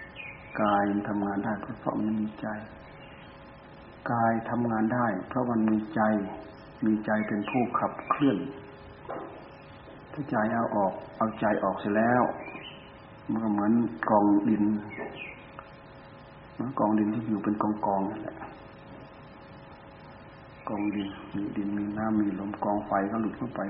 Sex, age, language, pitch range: male, 60-79, Thai, 105-115 Hz